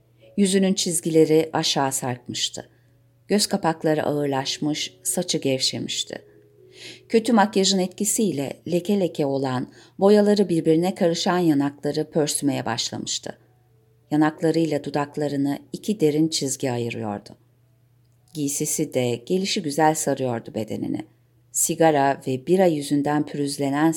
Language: Turkish